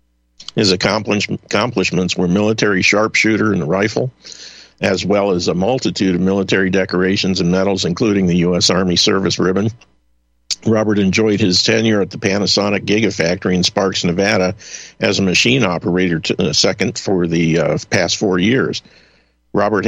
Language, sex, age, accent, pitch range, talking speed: English, male, 50-69, American, 90-105 Hz, 140 wpm